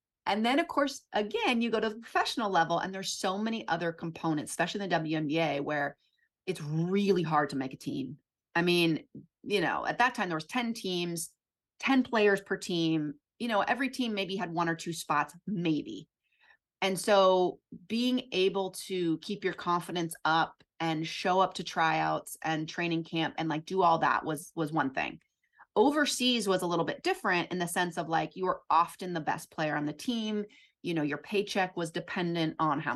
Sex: female